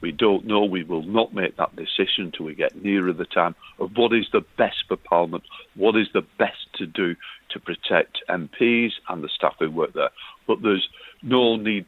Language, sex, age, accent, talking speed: English, male, 50-69, British, 205 wpm